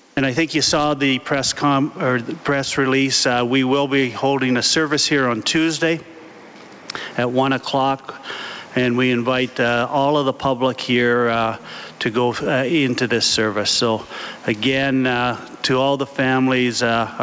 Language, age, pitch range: English, 40-59, 125-150 Hz